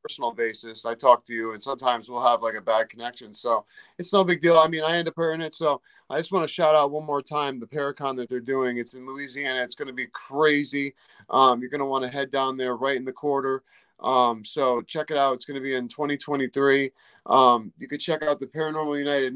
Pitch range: 125-145 Hz